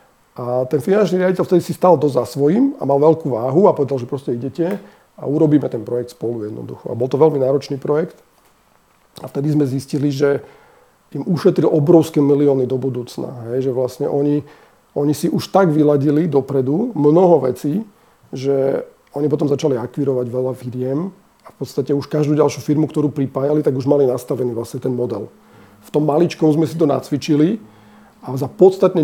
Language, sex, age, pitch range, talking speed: Slovak, male, 40-59, 140-160 Hz, 180 wpm